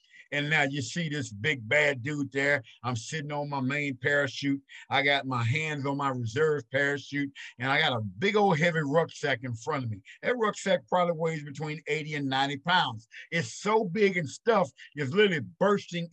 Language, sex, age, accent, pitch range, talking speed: English, male, 50-69, American, 135-180 Hz, 195 wpm